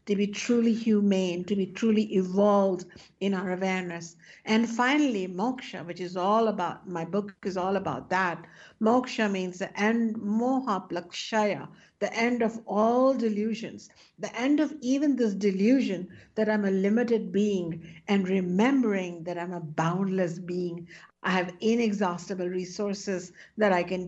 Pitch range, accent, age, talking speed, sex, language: 185-220 Hz, Indian, 60-79, 150 wpm, female, English